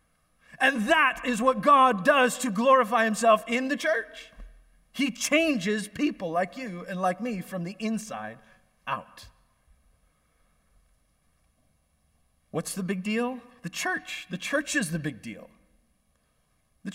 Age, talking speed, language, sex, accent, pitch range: 30-49, 130 wpm, English, male, American, 190-250 Hz